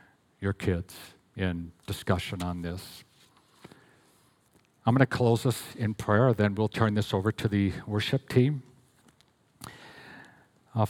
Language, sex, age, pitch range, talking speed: English, male, 50-69, 95-110 Hz, 125 wpm